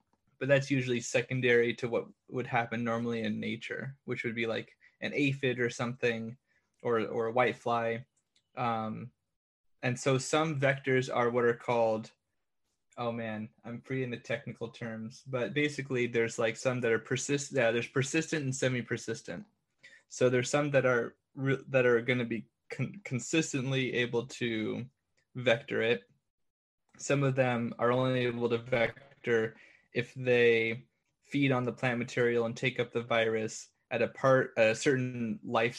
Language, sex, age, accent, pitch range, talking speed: English, male, 20-39, American, 115-130 Hz, 160 wpm